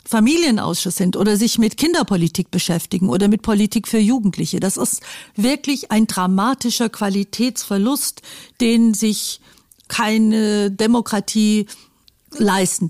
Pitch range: 190-235 Hz